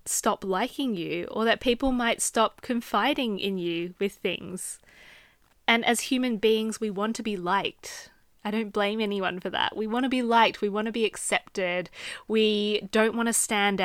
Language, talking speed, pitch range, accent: English, 185 wpm, 195-235 Hz, Australian